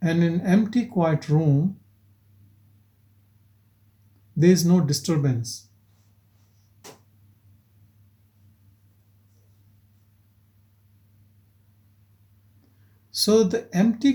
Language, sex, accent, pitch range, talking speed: English, male, Indian, 100-165 Hz, 45 wpm